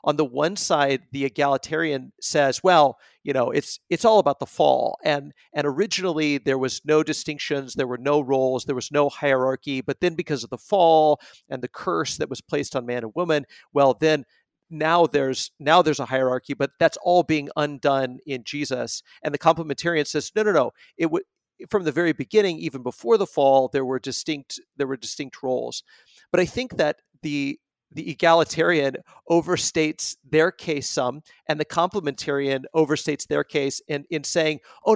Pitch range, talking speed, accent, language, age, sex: 135-165 Hz, 185 wpm, American, English, 40-59, male